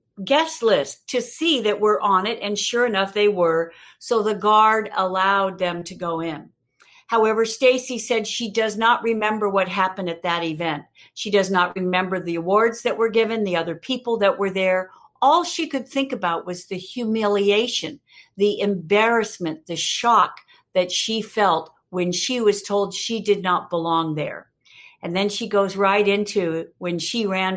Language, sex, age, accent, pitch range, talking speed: English, female, 50-69, American, 180-240 Hz, 175 wpm